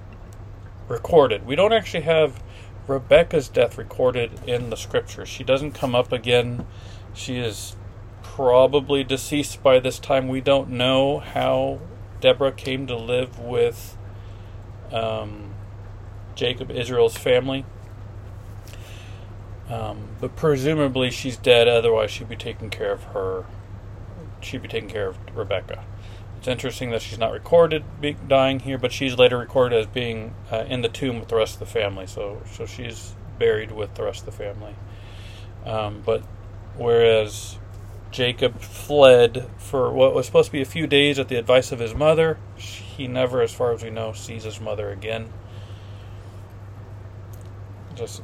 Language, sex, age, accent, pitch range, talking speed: English, male, 40-59, American, 100-130 Hz, 150 wpm